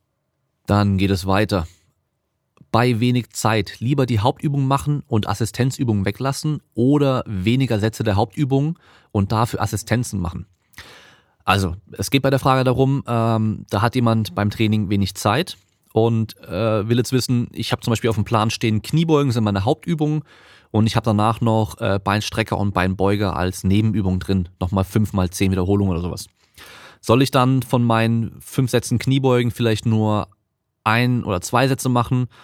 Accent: German